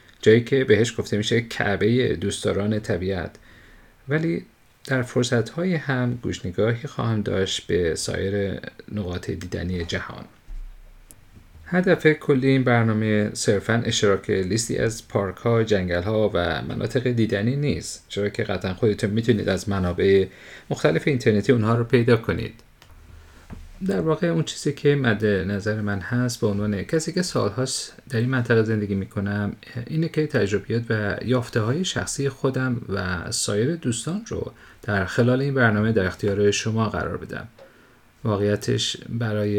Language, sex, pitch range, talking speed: Persian, male, 100-125 Hz, 140 wpm